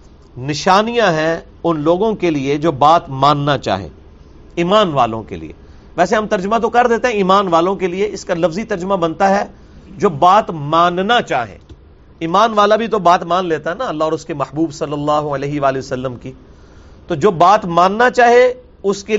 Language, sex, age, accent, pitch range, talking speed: English, male, 40-59, Indian, 130-195 Hz, 180 wpm